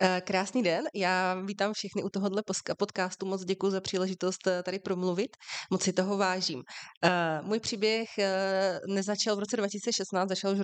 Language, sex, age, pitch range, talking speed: Slovak, female, 30-49, 180-195 Hz, 150 wpm